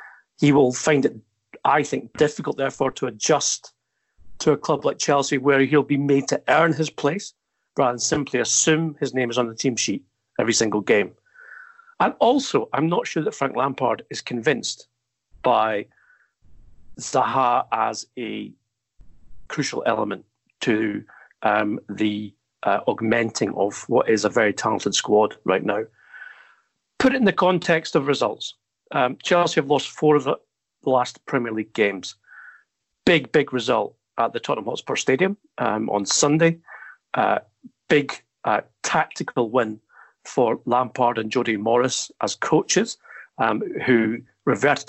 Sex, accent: male, British